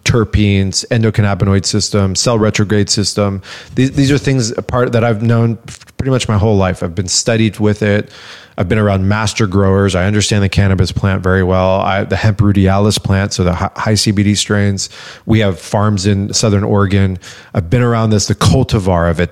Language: English